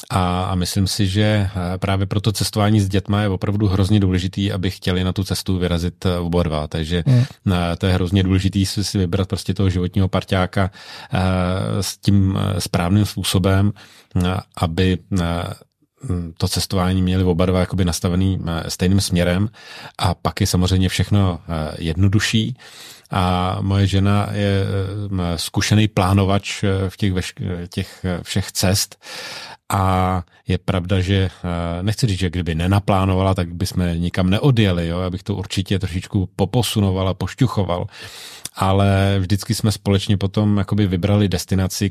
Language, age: Czech, 30-49